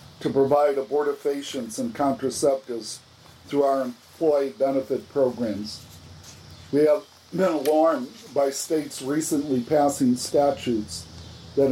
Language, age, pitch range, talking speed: English, 50-69, 125-150 Hz, 100 wpm